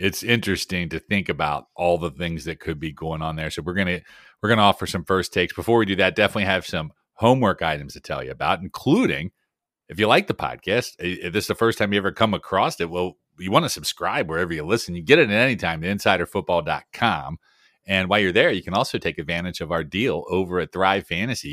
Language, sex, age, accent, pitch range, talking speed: English, male, 40-59, American, 85-105 Hz, 240 wpm